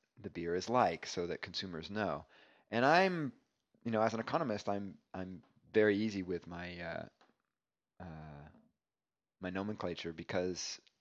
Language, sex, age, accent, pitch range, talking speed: English, male, 30-49, American, 85-105 Hz, 140 wpm